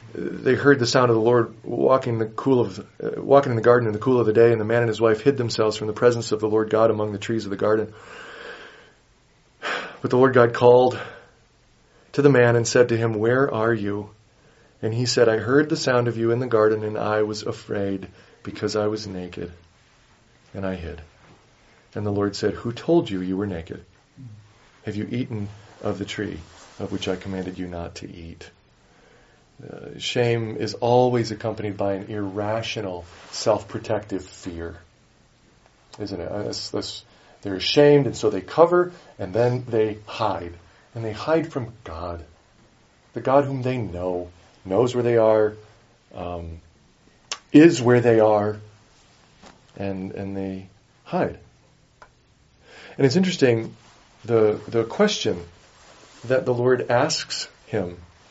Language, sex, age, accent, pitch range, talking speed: English, male, 40-59, American, 100-120 Hz, 165 wpm